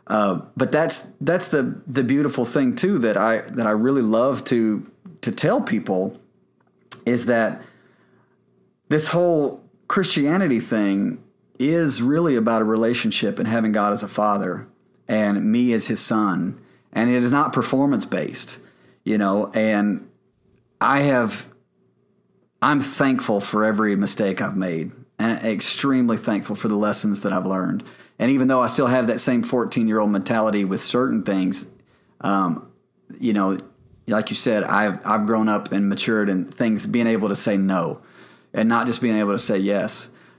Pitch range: 105-125 Hz